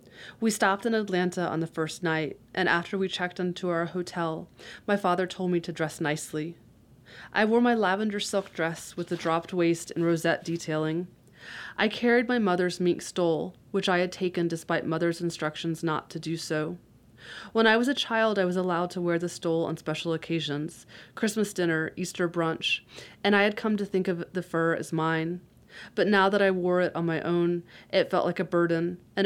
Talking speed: 195 wpm